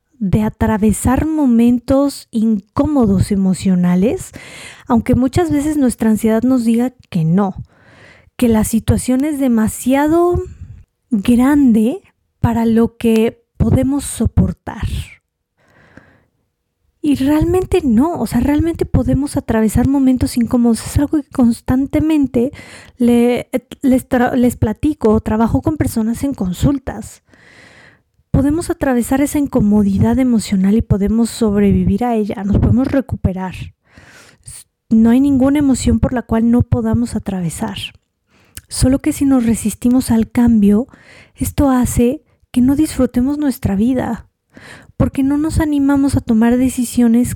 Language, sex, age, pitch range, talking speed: Spanish, female, 30-49, 220-275 Hz, 115 wpm